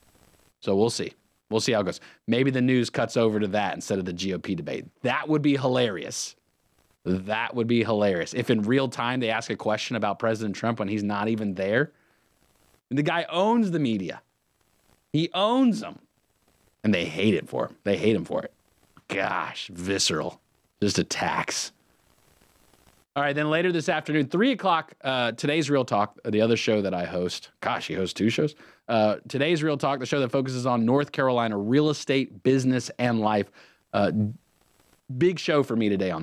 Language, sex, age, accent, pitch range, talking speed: English, male, 30-49, American, 105-145 Hz, 185 wpm